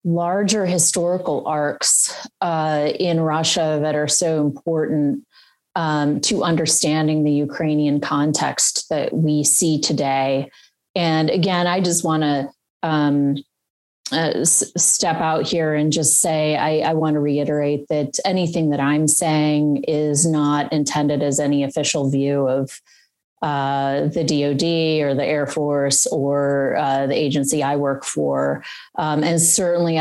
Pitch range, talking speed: 145-170 Hz, 140 wpm